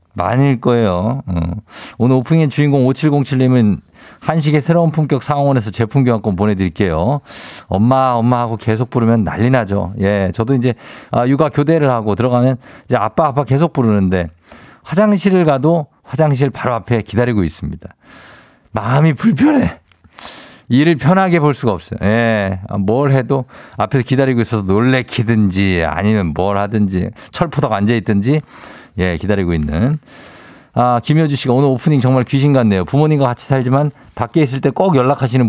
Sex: male